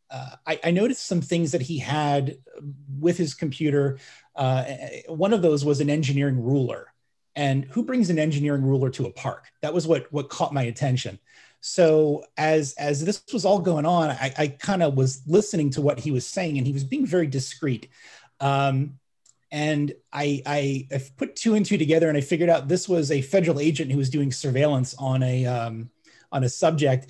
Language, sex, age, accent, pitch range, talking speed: English, male, 30-49, American, 130-155 Hz, 200 wpm